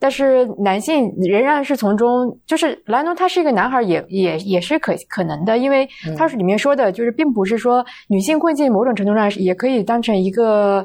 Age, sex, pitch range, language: 20-39, female, 190-260 Hz, Chinese